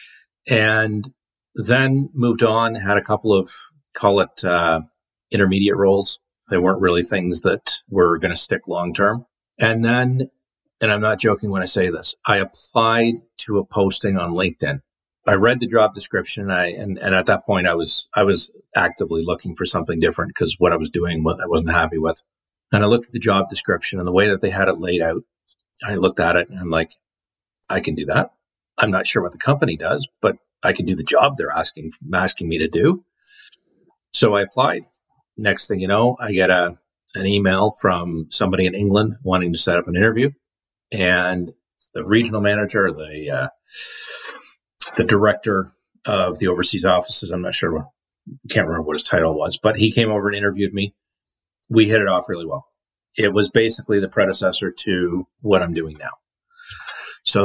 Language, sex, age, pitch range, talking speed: English, male, 40-59, 90-110 Hz, 190 wpm